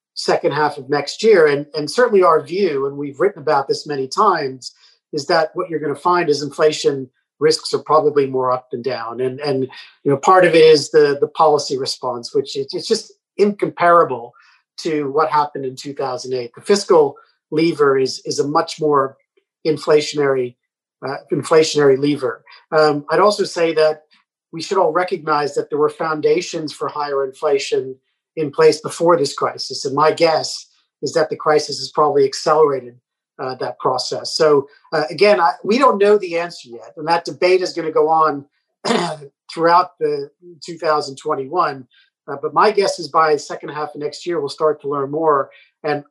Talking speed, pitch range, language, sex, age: 180 wpm, 145-190 Hz, English, male, 40-59